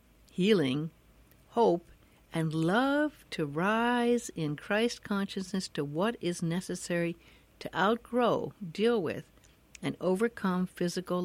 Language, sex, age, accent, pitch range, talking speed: English, female, 60-79, American, 160-225 Hz, 105 wpm